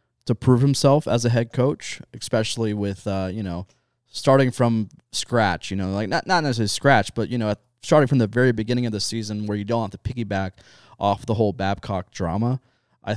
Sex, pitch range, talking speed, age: male, 110-135 Hz, 210 wpm, 20-39